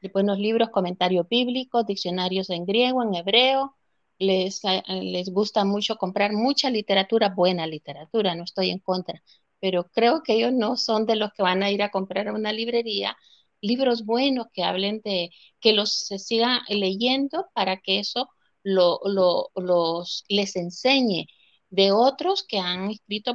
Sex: female